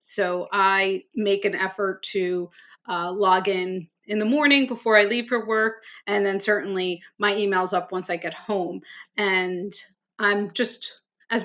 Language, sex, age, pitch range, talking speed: English, female, 30-49, 195-230 Hz, 165 wpm